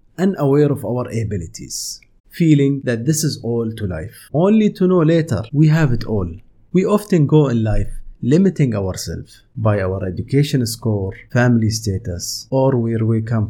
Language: English